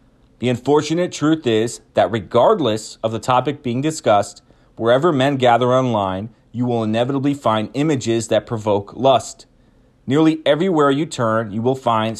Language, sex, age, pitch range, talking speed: English, male, 30-49, 110-145 Hz, 150 wpm